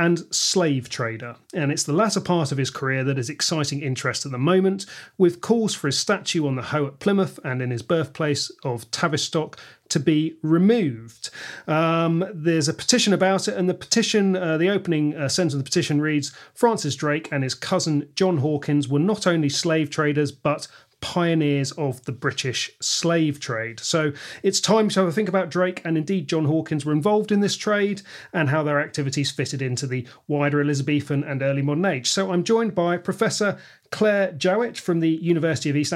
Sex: male